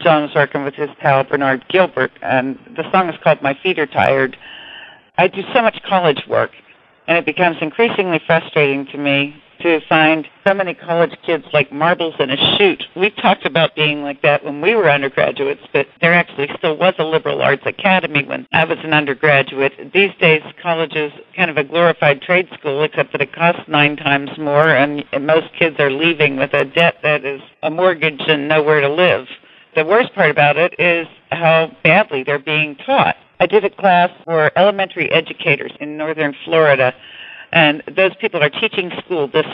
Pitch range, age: 145-180 Hz, 50-69